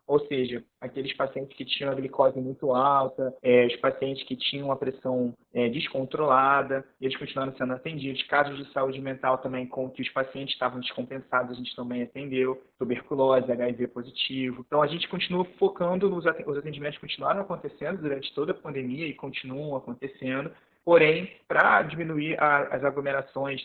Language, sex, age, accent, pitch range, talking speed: Portuguese, male, 20-39, Brazilian, 130-155 Hz, 155 wpm